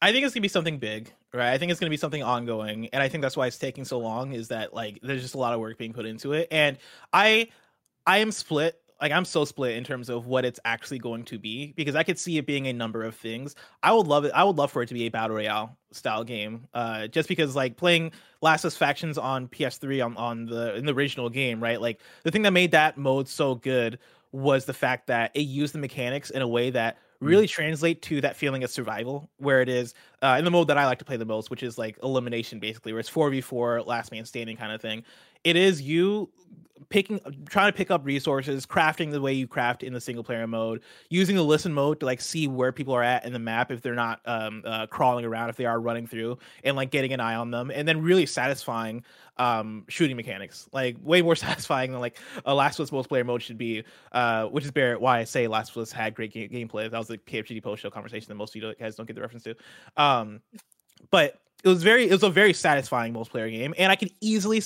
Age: 20-39